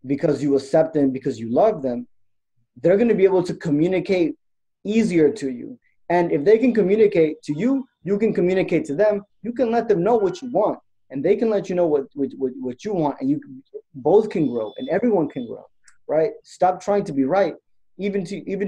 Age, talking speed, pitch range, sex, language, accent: 20-39, 200 wpm, 120-175 Hz, male, English, American